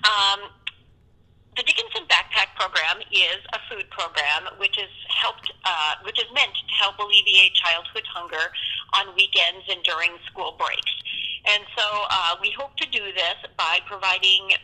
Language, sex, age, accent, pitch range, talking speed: English, female, 40-59, American, 180-205 Hz, 150 wpm